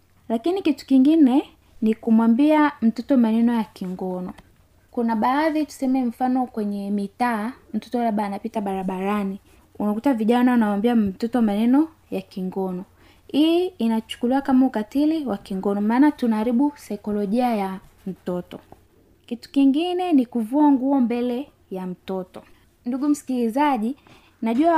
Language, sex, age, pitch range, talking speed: Swahili, female, 20-39, 210-275 Hz, 115 wpm